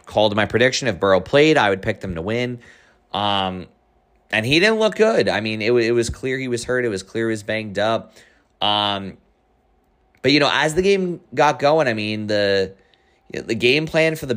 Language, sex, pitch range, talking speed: English, male, 90-120 Hz, 215 wpm